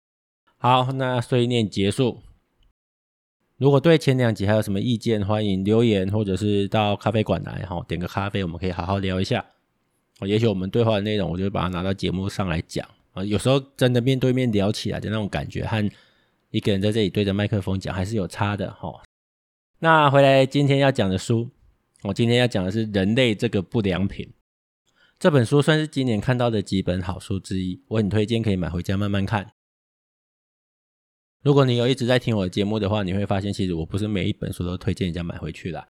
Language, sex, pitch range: Chinese, male, 95-120 Hz